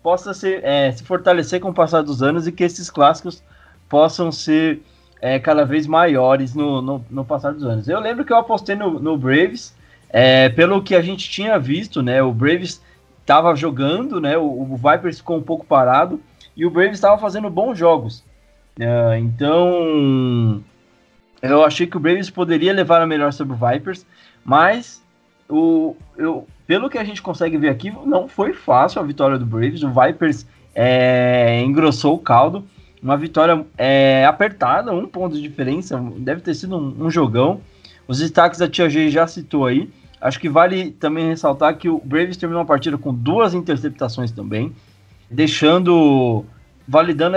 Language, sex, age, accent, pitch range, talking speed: Portuguese, male, 20-39, Brazilian, 135-180 Hz, 175 wpm